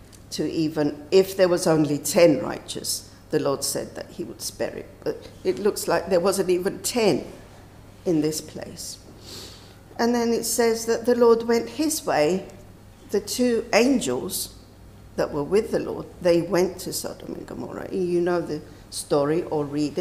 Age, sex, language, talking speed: 60-79, female, English, 170 wpm